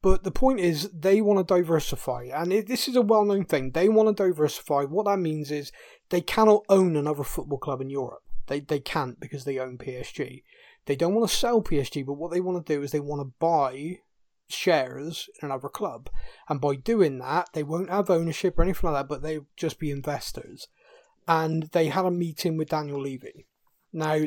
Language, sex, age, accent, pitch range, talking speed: English, male, 30-49, British, 140-180 Hz, 210 wpm